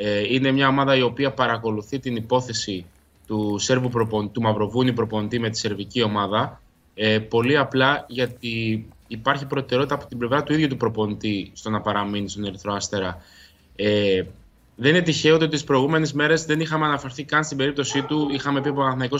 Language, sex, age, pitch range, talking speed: Greek, male, 20-39, 110-140 Hz, 165 wpm